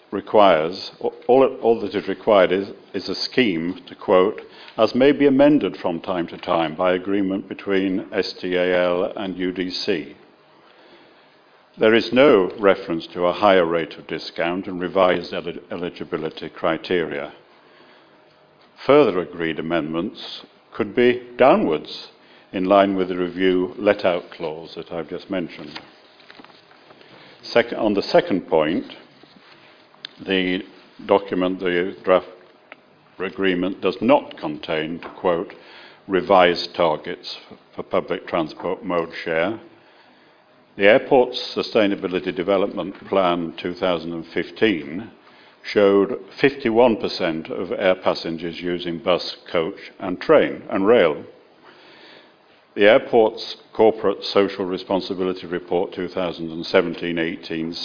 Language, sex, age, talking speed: English, male, 60-79, 110 wpm